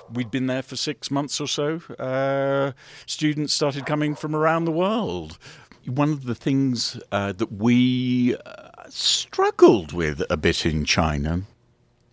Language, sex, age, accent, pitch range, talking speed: English, male, 50-69, British, 105-150 Hz, 150 wpm